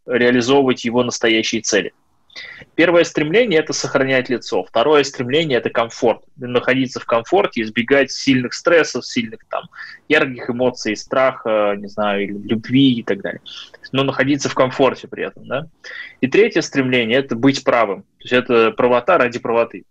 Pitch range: 115-140 Hz